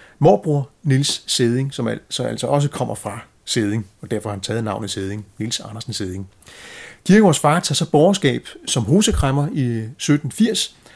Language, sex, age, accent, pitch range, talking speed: Danish, male, 30-49, native, 115-160 Hz, 155 wpm